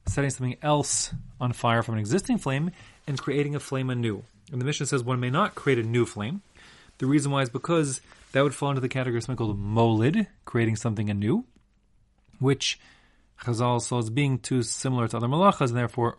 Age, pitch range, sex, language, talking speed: 30-49, 110-140 Hz, male, English, 205 wpm